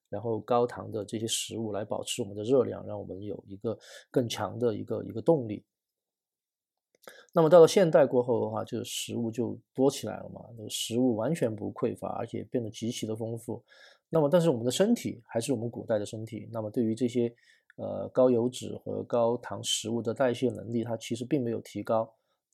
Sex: male